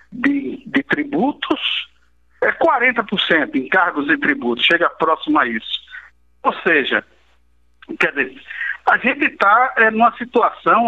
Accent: Brazilian